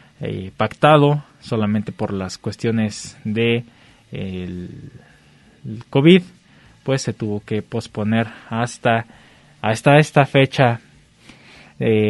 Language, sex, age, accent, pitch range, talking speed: Spanish, male, 20-39, Mexican, 110-135 Hz, 100 wpm